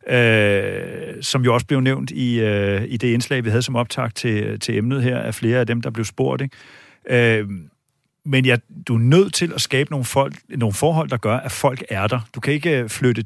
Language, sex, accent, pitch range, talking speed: Danish, male, native, 115-150 Hz, 205 wpm